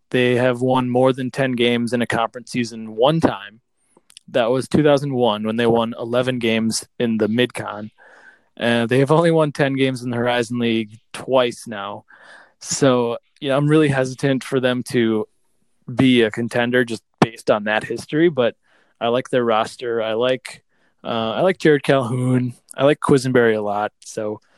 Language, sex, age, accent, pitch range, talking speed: English, male, 20-39, American, 115-135 Hz, 175 wpm